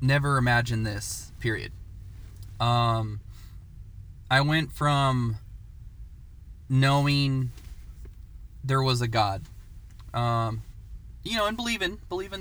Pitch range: 100-130 Hz